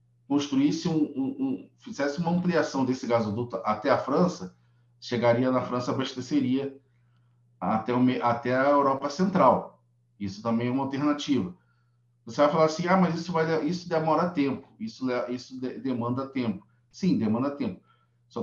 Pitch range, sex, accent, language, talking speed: 115-150 Hz, male, Brazilian, Portuguese, 155 wpm